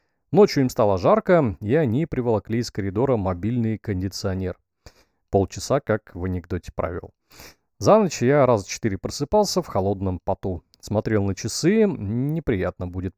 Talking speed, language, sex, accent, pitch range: 140 wpm, Russian, male, native, 95-155 Hz